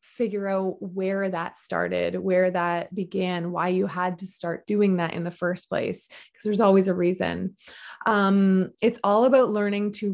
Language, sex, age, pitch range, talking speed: English, female, 20-39, 180-210 Hz, 180 wpm